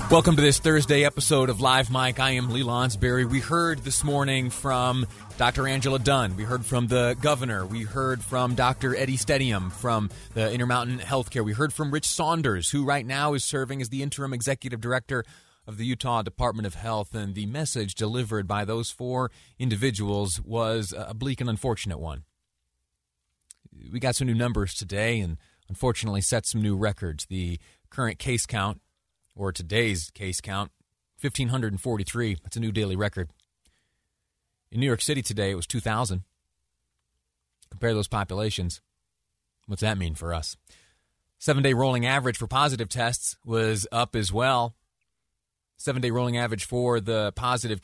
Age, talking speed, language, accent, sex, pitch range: 30-49, 165 wpm, English, American, male, 100-130 Hz